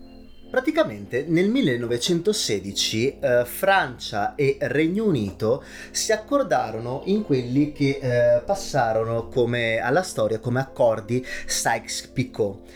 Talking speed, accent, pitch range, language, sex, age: 100 wpm, native, 115-185 Hz, Italian, male, 30-49